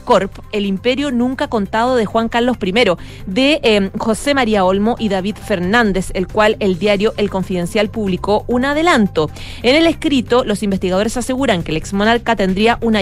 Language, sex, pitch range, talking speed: Spanish, female, 190-235 Hz, 170 wpm